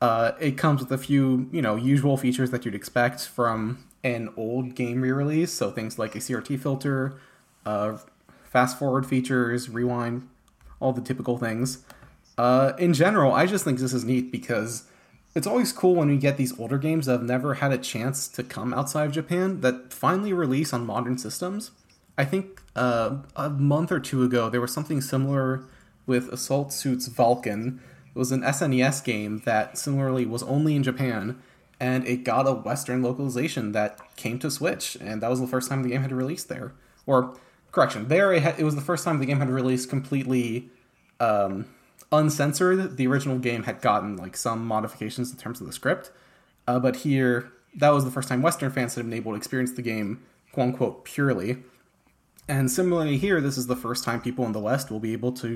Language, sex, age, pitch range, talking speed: English, male, 20-39, 120-140 Hz, 195 wpm